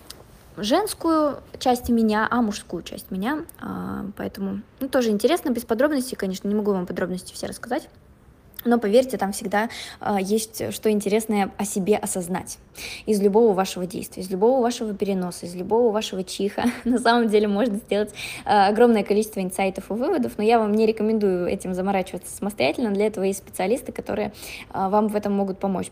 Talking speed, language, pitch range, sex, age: 160 wpm, Russian, 185-225 Hz, female, 20-39